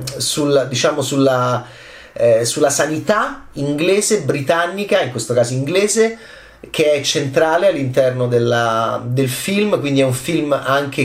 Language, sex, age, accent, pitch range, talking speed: Italian, male, 30-49, native, 120-165 Hz, 130 wpm